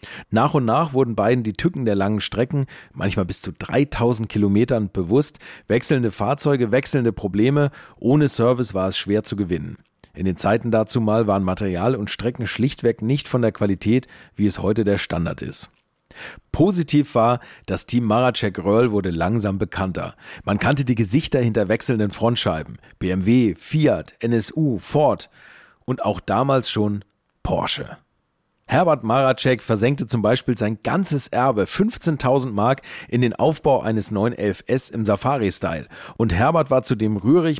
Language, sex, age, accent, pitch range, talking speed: German, male, 40-59, German, 105-135 Hz, 150 wpm